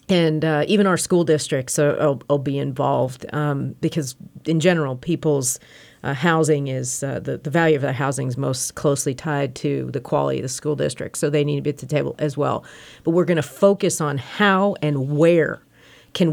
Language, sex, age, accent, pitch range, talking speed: English, female, 40-59, American, 140-170 Hz, 200 wpm